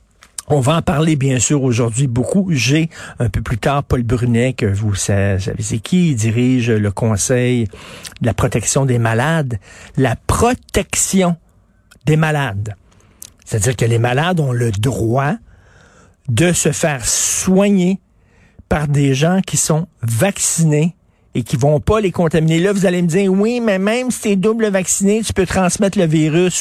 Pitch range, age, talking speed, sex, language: 115-180 Hz, 50-69, 165 wpm, male, French